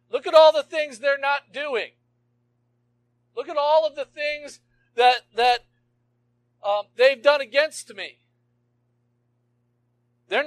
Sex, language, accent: male, English, American